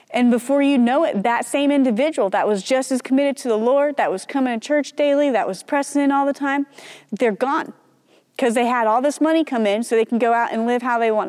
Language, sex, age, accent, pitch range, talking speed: English, female, 30-49, American, 225-275 Hz, 260 wpm